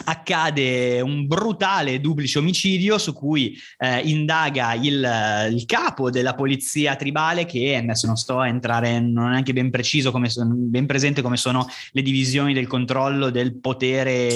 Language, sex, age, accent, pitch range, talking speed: Italian, male, 20-39, native, 130-160 Hz, 160 wpm